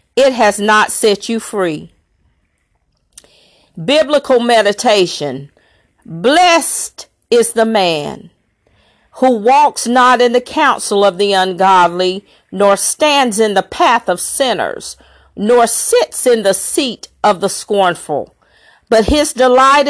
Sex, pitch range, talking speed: female, 195-260 Hz, 120 wpm